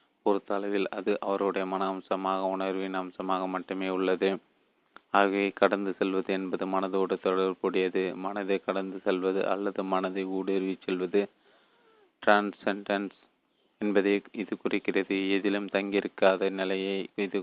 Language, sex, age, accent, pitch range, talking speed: Tamil, male, 30-49, native, 95-100 Hz, 105 wpm